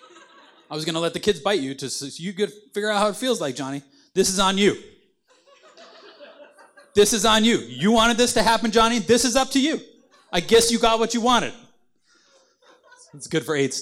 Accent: American